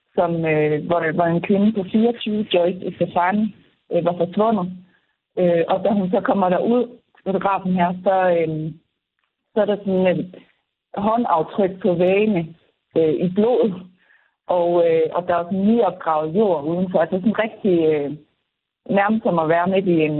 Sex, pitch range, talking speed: female, 170-200 Hz, 170 wpm